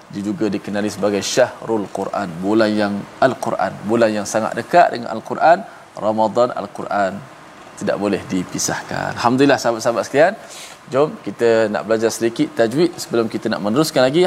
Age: 20-39